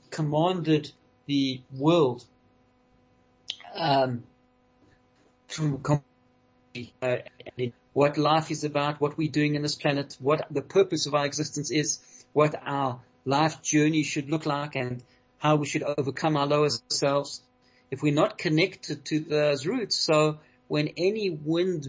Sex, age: male, 40-59